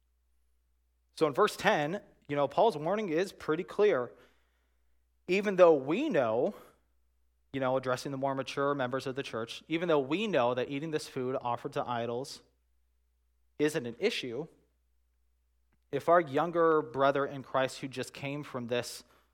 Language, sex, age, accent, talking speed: English, male, 20-39, American, 155 wpm